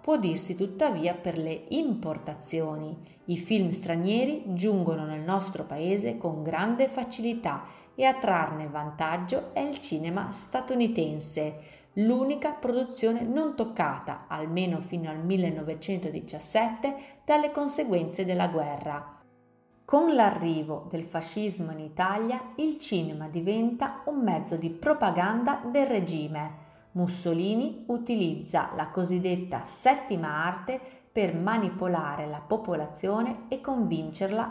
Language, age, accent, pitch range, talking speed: Italian, 30-49, native, 165-240 Hz, 110 wpm